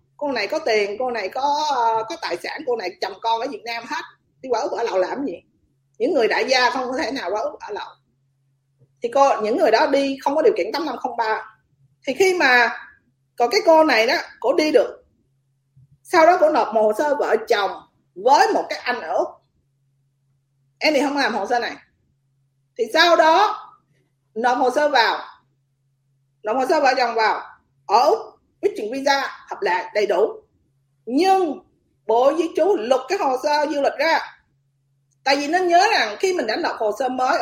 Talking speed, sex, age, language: 205 wpm, female, 20-39, Vietnamese